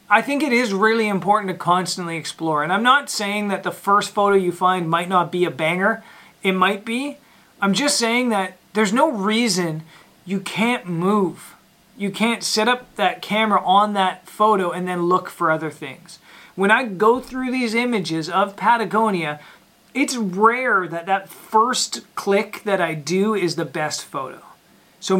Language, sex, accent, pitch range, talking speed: English, male, American, 180-225 Hz, 175 wpm